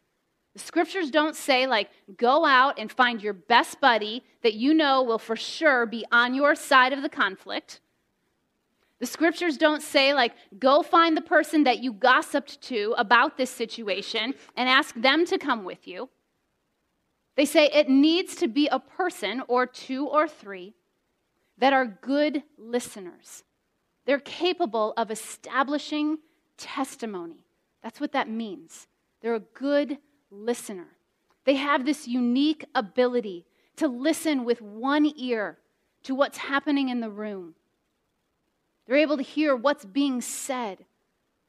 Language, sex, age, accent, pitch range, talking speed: English, female, 30-49, American, 235-300 Hz, 145 wpm